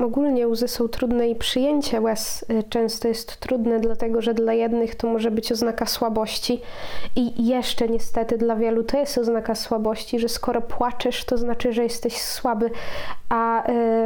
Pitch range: 230-250 Hz